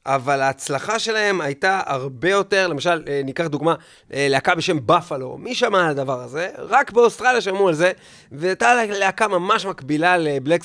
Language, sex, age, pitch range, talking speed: Hebrew, male, 30-49, 135-195 Hz, 150 wpm